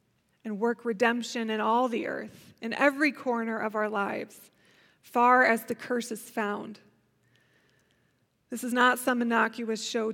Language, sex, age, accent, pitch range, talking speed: English, female, 20-39, American, 220-255 Hz, 150 wpm